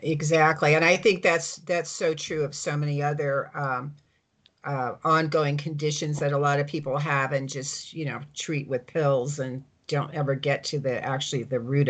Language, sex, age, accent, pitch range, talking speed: English, female, 50-69, American, 145-185 Hz, 190 wpm